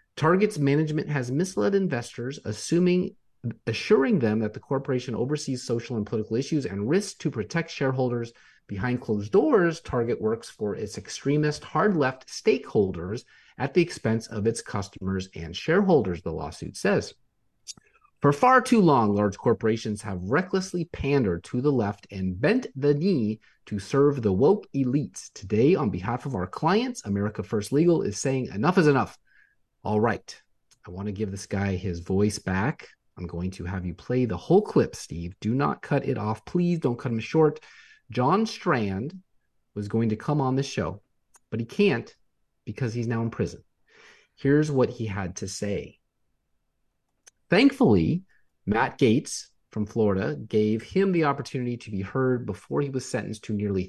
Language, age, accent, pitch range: English, 30-49, American, 105-150 Hz